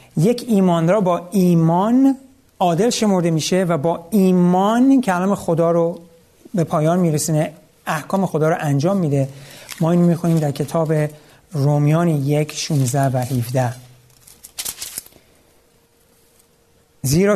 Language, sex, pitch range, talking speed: Persian, male, 150-195 Hz, 105 wpm